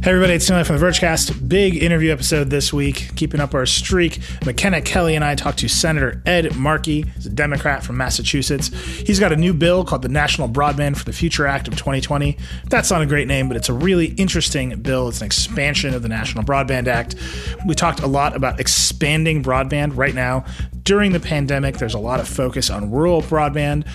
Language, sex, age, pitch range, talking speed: English, male, 30-49, 115-155 Hz, 210 wpm